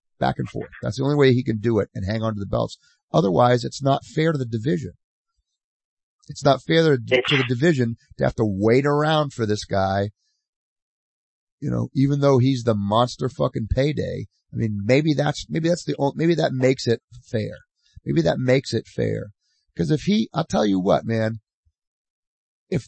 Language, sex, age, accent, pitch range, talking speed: English, male, 30-49, American, 110-150 Hz, 195 wpm